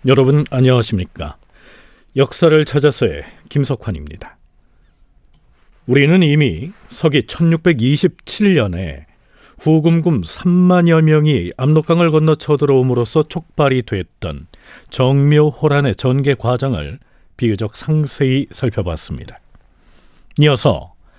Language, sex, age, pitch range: Korean, male, 40-59, 125-165 Hz